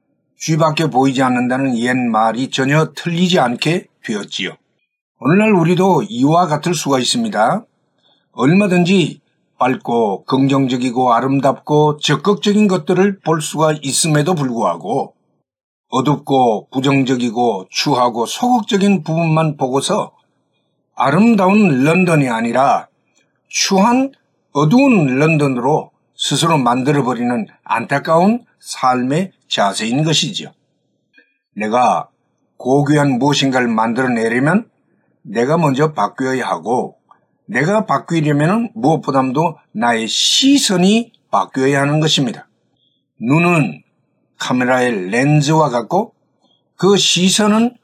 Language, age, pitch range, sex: Korean, 50-69, 135-185 Hz, male